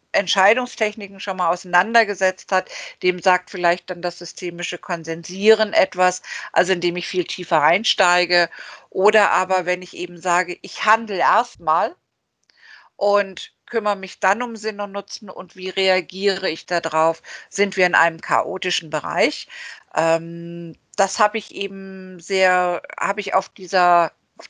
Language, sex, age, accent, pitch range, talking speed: German, female, 50-69, German, 180-205 Hz, 140 wpm